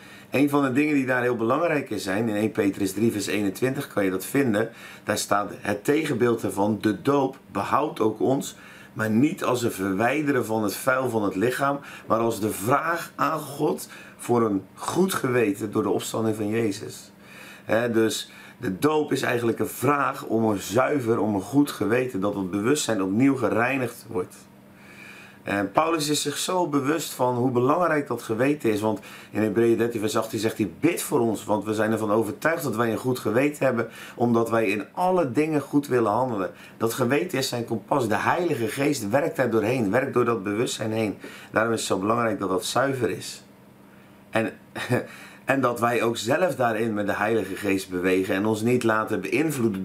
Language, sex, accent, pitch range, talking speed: Dutch, male, Dutch, 105-130 Hz, 195 wpm